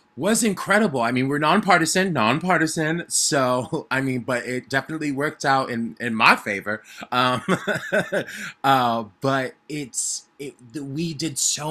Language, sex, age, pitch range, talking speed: English, male, 20-39, 115-140 Hz, 140 wpm